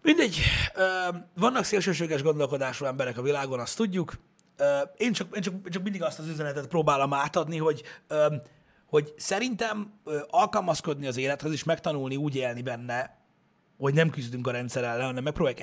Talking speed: 140 wpm